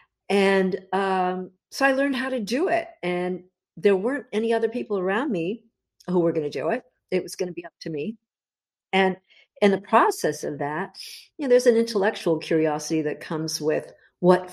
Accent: American